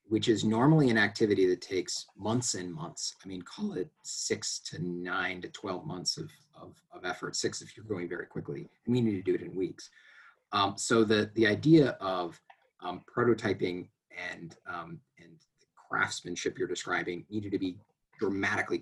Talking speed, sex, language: 180 wpm, male, English